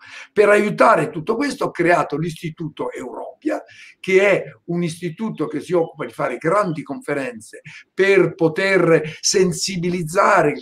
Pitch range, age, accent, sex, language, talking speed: 155-195 Hz, 50-69, native, male, Italian, 130 wpm